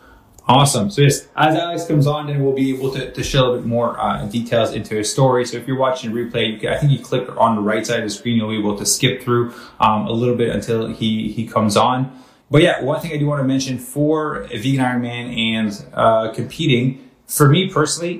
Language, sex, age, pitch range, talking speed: English, male, 20-39, 115-135 Hz, 230 wpm